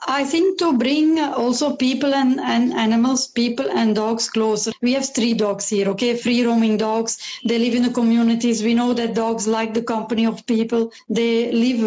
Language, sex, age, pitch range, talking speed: English, female, 30-49, 230-270 Hz, 185 wpm